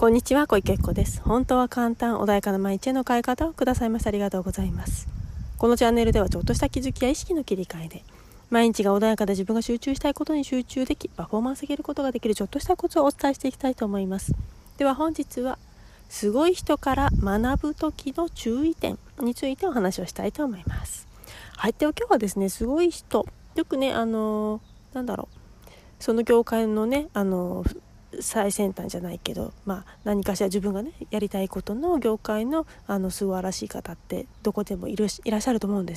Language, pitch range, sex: Japanese, 195-270 Hz, female